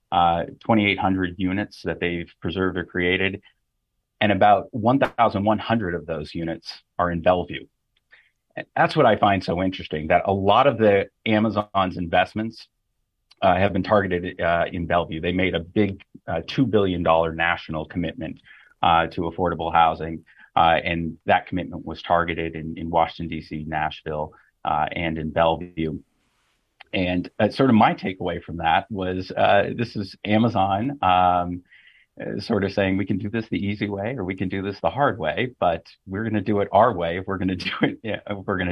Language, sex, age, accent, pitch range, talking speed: English, male, 30-49, American, 85-100 Hz, 175 wpm